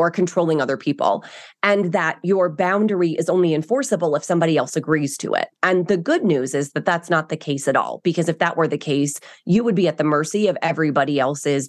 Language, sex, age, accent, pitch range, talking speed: English, female, 30-49, American, 160-215 Hz, 225 wpm